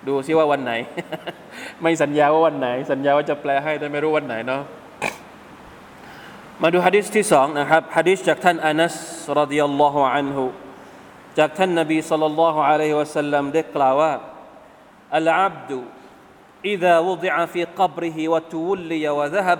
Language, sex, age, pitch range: Thai, male, 20-39, 145-185 Hz